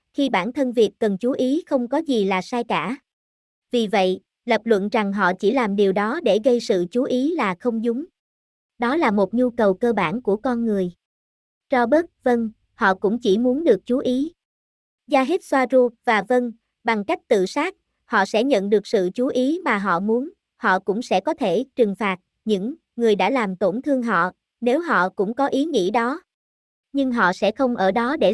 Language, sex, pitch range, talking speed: Vietnamese, male, 200-260 Hz, 205 wpm